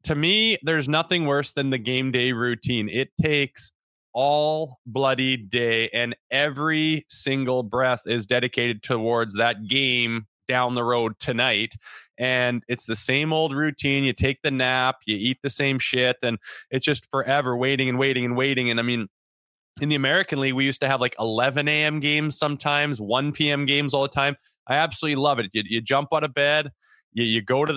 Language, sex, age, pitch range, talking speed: English, male, 20-39, 120-145 Hz, 190 wpm